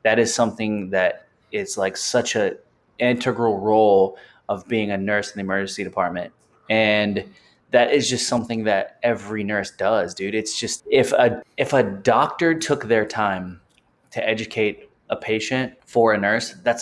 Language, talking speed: English, 165 wpm